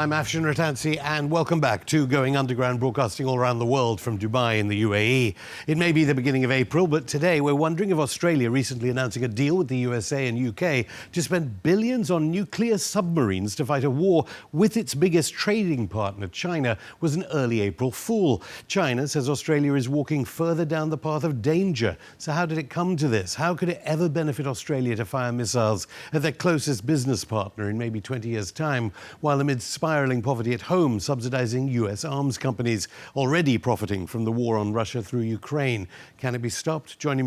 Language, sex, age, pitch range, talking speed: English, male, 60-79, 120-155 Hz, 195 wpm